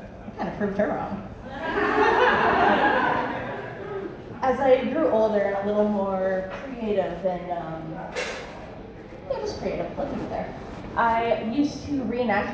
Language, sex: English, female